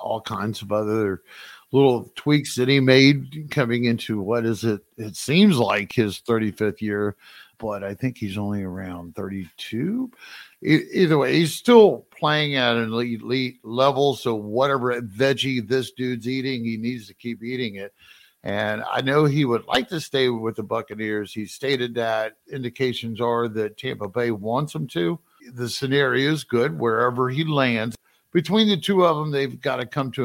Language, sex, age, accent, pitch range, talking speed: English, male, 50-69, American, 110-135 Hz, 175 wpm